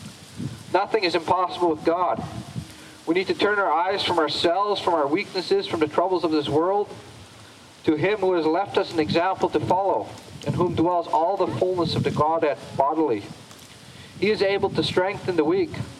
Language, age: English, 40-59